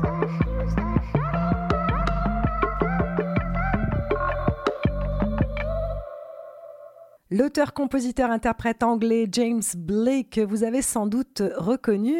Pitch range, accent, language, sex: 170-220 Hz, French, French, female